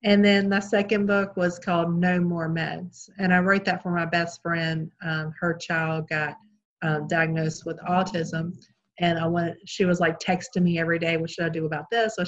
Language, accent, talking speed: English, American, 215 wpm